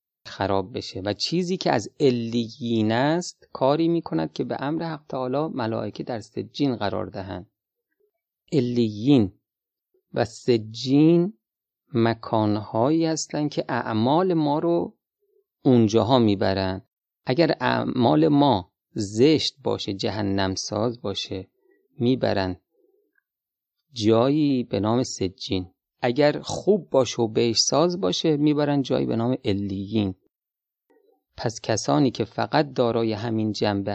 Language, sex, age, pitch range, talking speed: Persian, male, 30-49, 105-150 Hz, 110 wpm